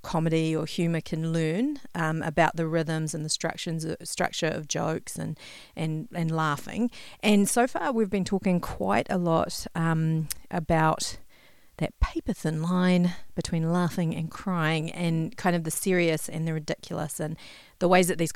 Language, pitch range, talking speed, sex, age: English, 160-185 Hz, 165 wpm, female, 40-59